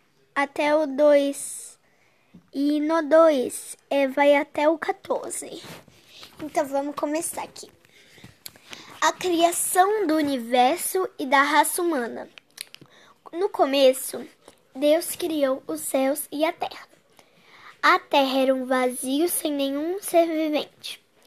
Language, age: Portuguese, 10-29